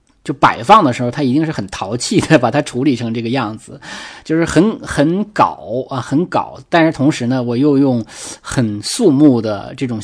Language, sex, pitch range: Chinese, male, 115-145 Hz